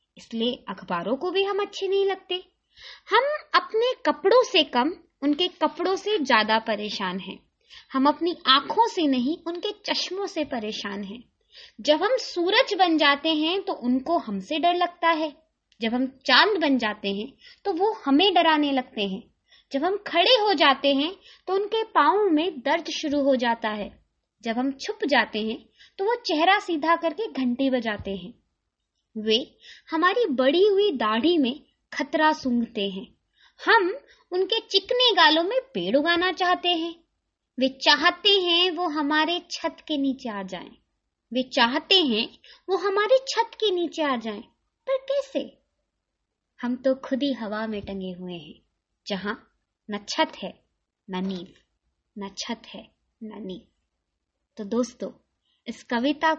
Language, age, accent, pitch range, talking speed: Hindi, 20-39, native, 220-350 Hz, 155 wpm